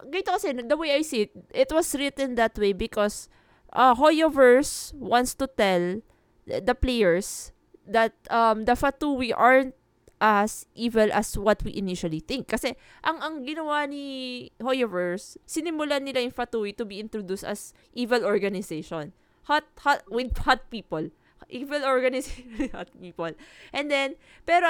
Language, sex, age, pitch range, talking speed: Filipino, female, 20-39, 205-285 Hz, 145 wpm